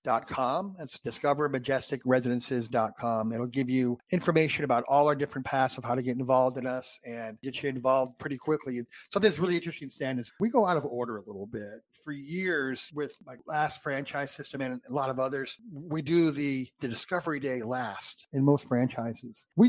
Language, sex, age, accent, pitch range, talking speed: English, male, 50-69, American, 120-150 Hz, 190 wpm